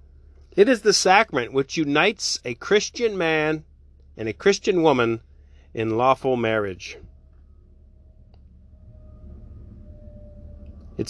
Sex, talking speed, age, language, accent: male, 90 wpm, 30-49, English, American